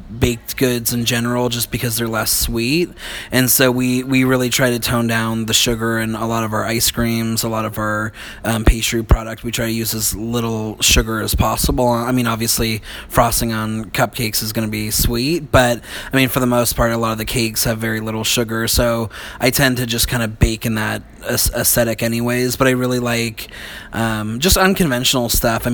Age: 20-39